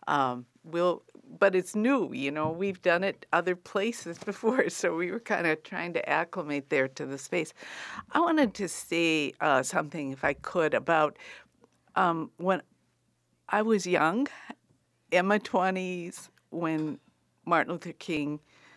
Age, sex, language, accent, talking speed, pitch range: 60-79, female, English, American, 150 wpm, 165-210 Hz